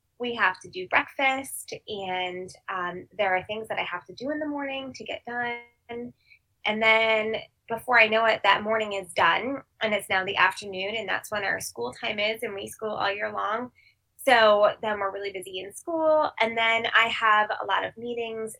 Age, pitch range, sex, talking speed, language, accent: 20-39, 195-240 Hz, female, 205 wpm, English, American